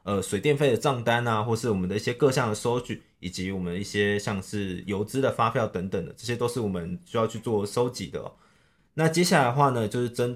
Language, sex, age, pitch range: Chinese, male, 20-39, 100-130 Hz